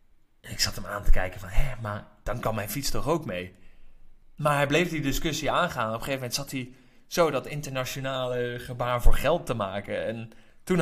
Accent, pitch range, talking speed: Dutch, 105-130 Hz, 215 wpm